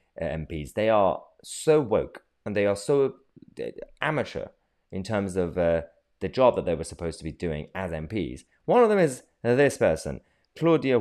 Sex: male